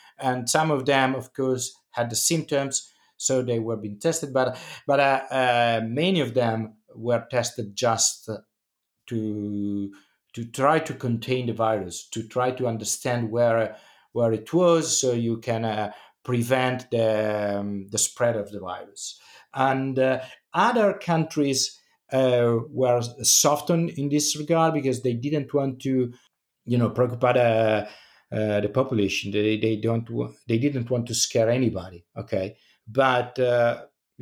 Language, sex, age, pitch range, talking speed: English, male, 50-69, 110-135 Hz, 150 wpm